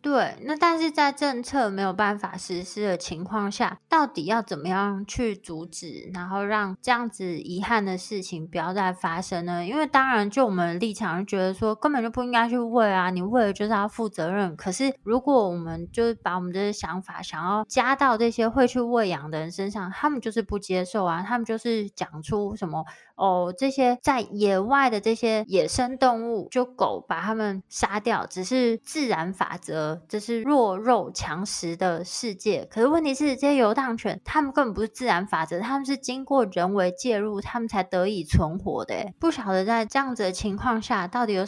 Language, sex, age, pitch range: Chinese, female, 20-39, 185-240 Hz